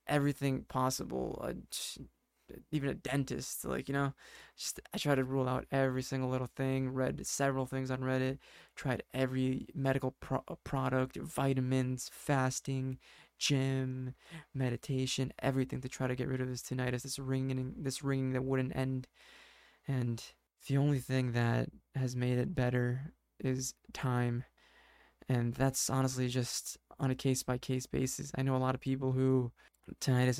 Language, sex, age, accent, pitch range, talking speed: English, male, 20-39, American, 130-140 Hz, 145 wpm